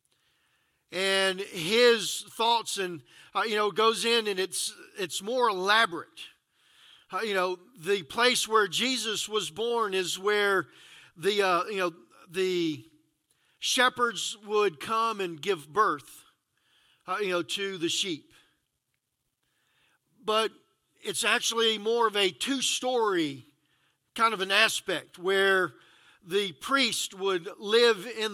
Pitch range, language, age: 195-245 Hz, English, 50-69